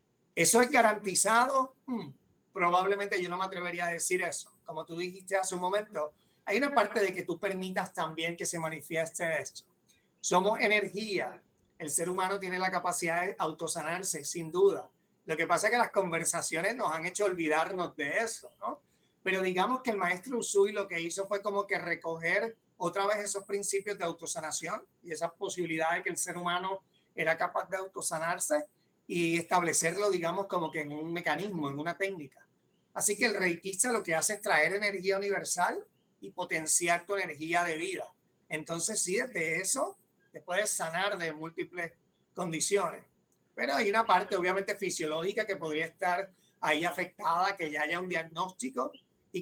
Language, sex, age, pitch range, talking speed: English, male, 30-49, 165-200 Hz, 170 wpm